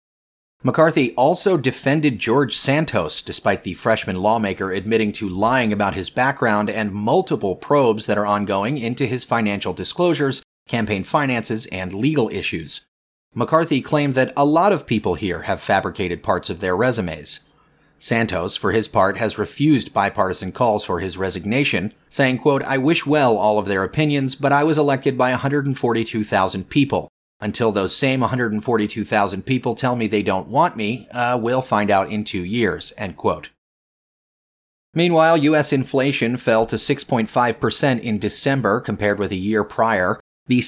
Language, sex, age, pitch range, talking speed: English, male, 30-49, 105-135 Hz, 150 wpm